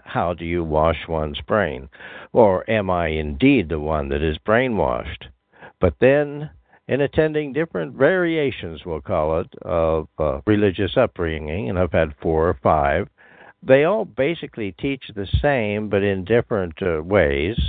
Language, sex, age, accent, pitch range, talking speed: English, male, 60-79, American, 80-110 Hz, 155 wpm